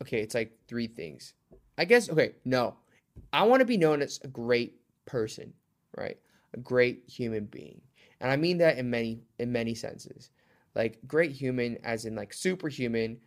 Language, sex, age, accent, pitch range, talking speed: English, male, 20-39, American, 115-135 Hz, 175 wpm